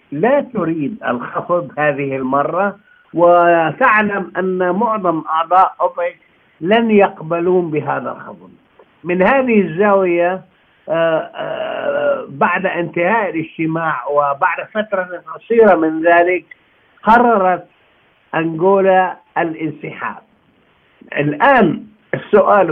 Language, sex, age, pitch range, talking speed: Arabic, male, 60-79, 160-210 Hz, 80 wpm